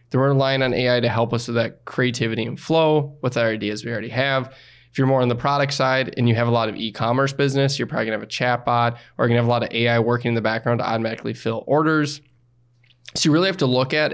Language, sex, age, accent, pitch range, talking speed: English, male, 20-39, American, 120-140 Hz, 265 wpm